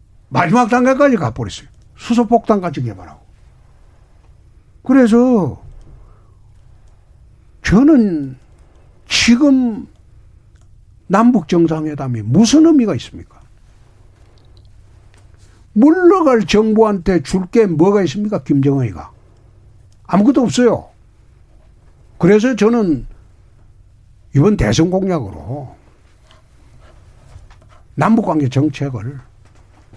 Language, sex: Korean, male